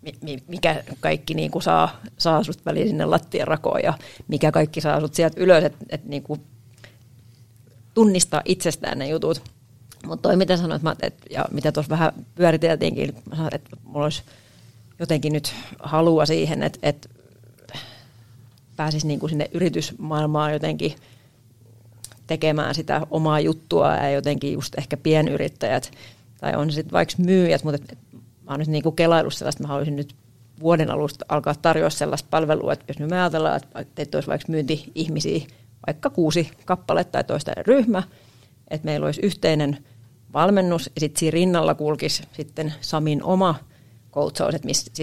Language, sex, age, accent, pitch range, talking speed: Finnish, female, 40-59, native, 125-160 Hz, 150 wpm